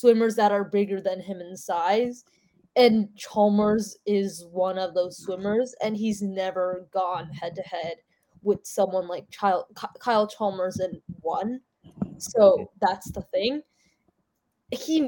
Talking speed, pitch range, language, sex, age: 125 wpm, 185-235 Hz, English, female, 20-39